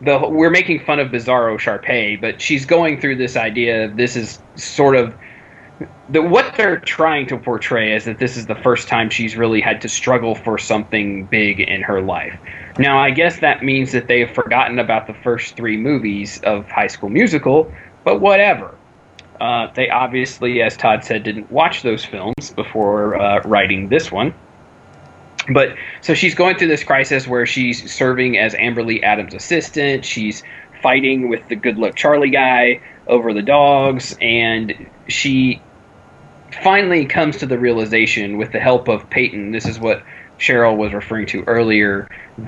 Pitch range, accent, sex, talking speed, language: 110-130 Hz, American, male, 170 wpm, English